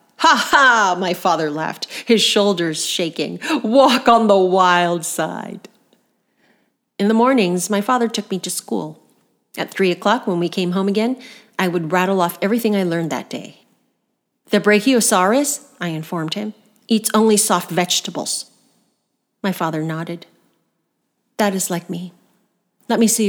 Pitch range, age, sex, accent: 175-220 Hz, 40-59, female, American